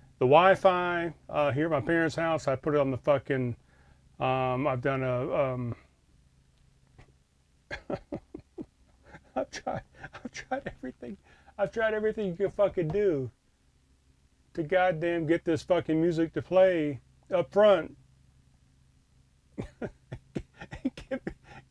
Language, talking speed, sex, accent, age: English, 115 wpm, male, American, 40-59